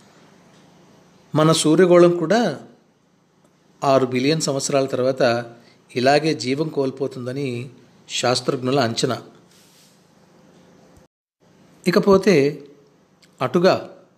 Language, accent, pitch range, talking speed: Telugu, native, 135-180 Hz, 60 wpm